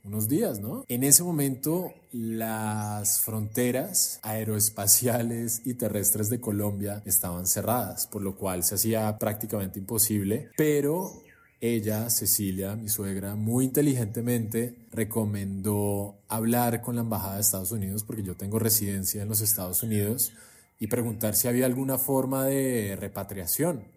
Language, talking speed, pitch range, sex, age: English, 135 wpm, 105-125 Hz, male, 20-39